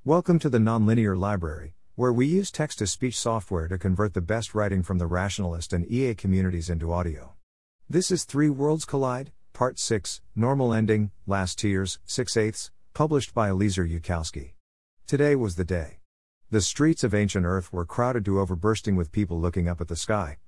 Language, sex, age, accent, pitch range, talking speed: English, male, 50-69, American, 90-115 Hz, 180 wpm